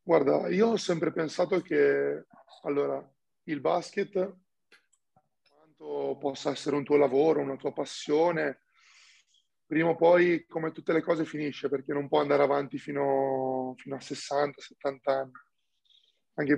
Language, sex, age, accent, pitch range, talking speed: Italian, male, 20-39, native, 135-150 Hz, 135 wpm